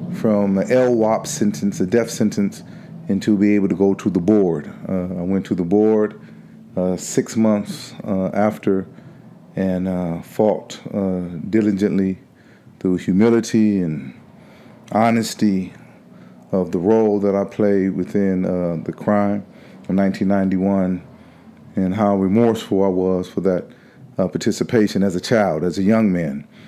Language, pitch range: English, 95-110 Hz